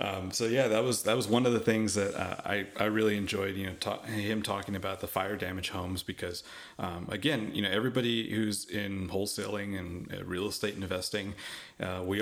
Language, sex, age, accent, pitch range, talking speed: English, male, 30-49, American, 95-105 Hz, 205 wpm